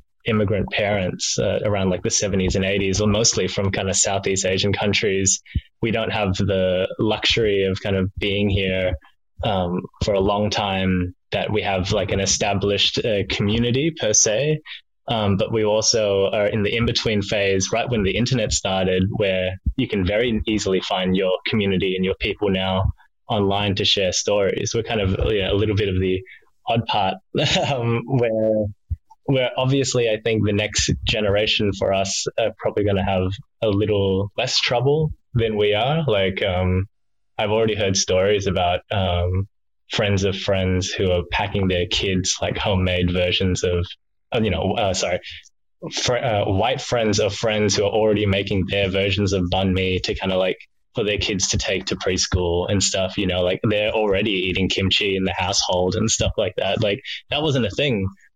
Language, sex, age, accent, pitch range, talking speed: English, male, 10-29, Australian, 95-105 Hz, 180 wpm